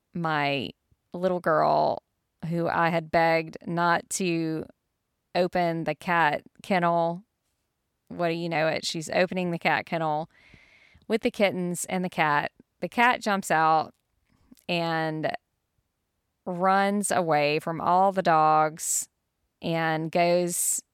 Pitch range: 160-180 Hz